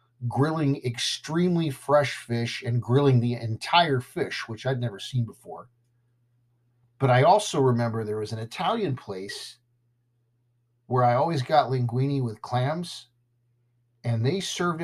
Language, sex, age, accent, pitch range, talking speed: English, male, 50-69, American, 115-130 Hz, 135 wpm